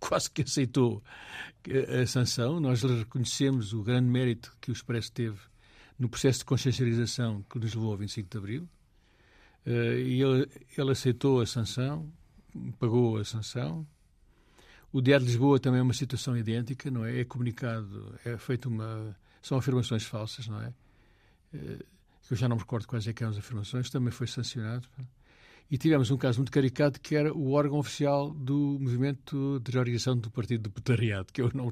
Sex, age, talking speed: male, 60-79, 175 wpm